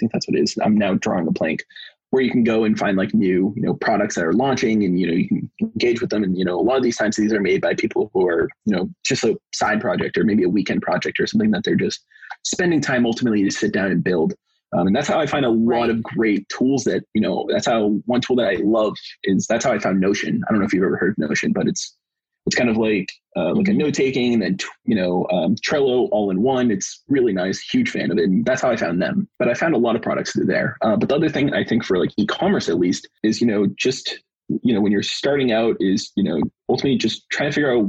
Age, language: 20-39, English